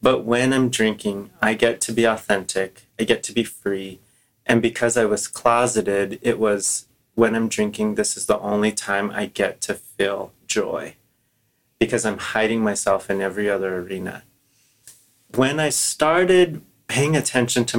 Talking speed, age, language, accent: 160 wpm, 30-49, English, American